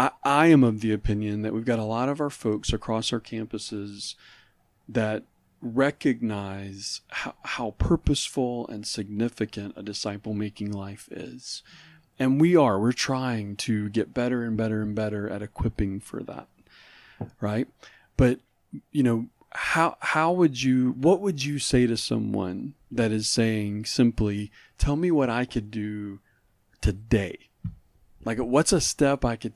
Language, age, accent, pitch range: English, 40-59, American, 105-130 Hz